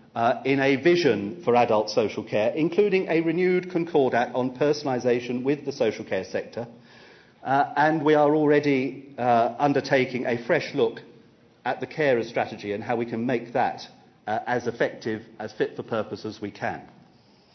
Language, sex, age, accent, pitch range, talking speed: English, male, 40-59, British, 120-165 Hz, 170 wpm